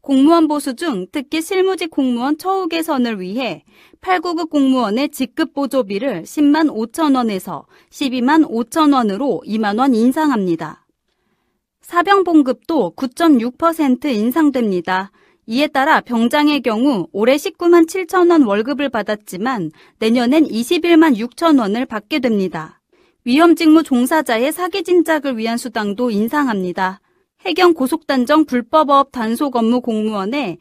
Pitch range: 230-325 Hz